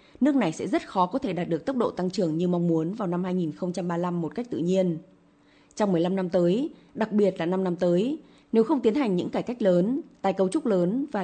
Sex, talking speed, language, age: female, 245 wpm, Vietnamese, 20-39